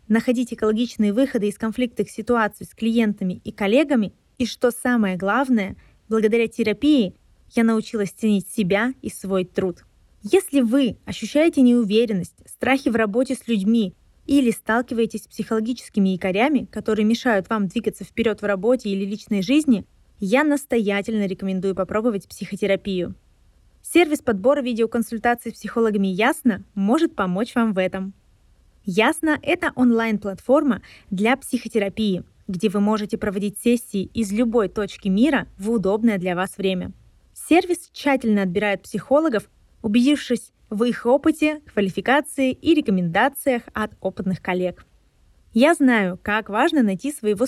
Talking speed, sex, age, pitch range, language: 130 wpm, female, 20-39, 205-255 Hz, Russian